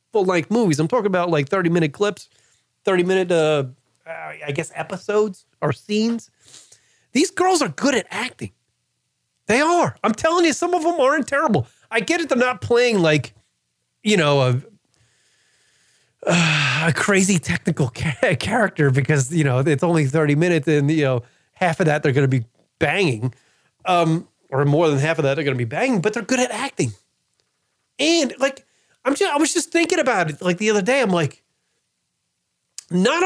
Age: 30-49